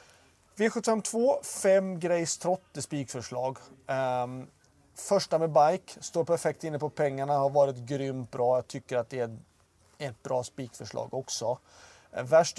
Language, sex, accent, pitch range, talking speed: Swedish, male, native, 130-170 Hz, 135 wpm